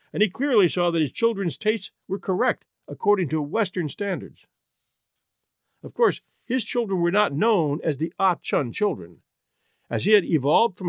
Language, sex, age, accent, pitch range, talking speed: English, male, 50-69, American, 145-205 Hz, 165 wpm